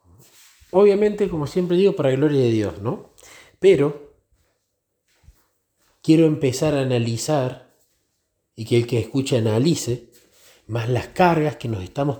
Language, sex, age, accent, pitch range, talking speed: Spanish, male, 40-59, Argentinian, 105-135 Hz, 135 wpm